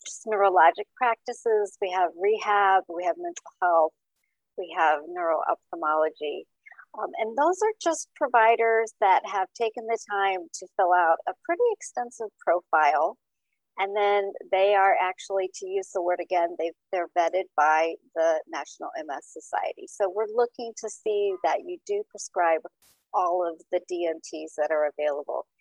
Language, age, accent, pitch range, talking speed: English, 50-69, American, 175-275 Hz, 150 wpm